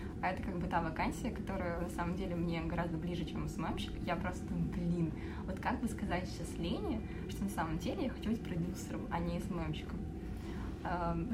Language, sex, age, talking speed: Russian, female, 20-39, 195 wpm